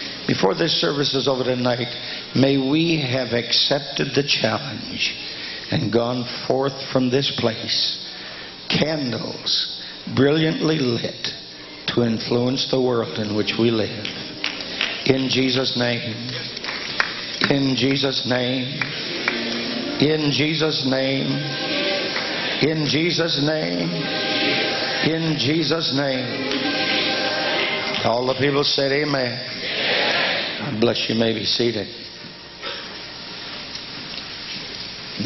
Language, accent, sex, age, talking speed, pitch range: English, American, male, 60-79, 95 wpm, 110-135 Hz